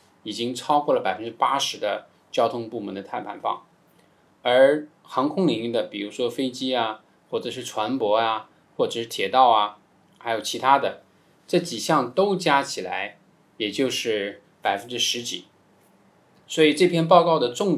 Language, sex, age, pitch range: Chinese, male, 20-39, 110-150 Hz